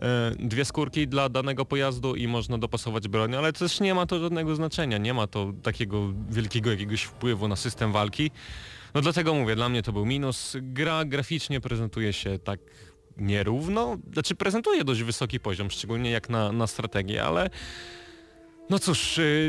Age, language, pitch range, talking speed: 20-39, Polish, 110-140 Hz, 165 wpm